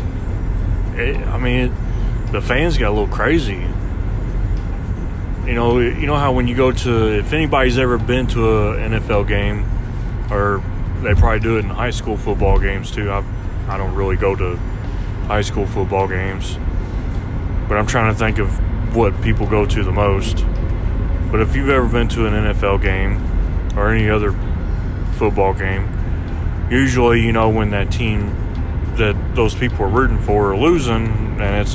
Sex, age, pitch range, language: male, 20-39, 95-115 Hz, English